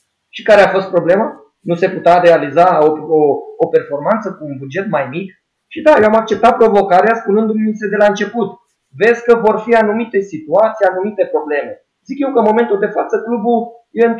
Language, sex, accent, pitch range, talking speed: Romanian, male, native, 160-215 Hz, 190 wpm